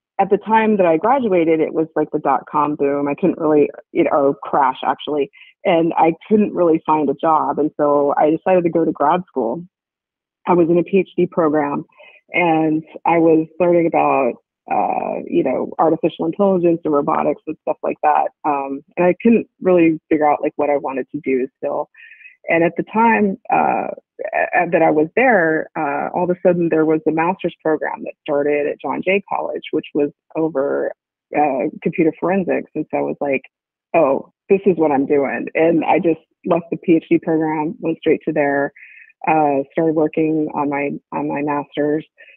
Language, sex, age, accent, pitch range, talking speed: English, female, 30-49, American, 150-175 Hz, 185 wpm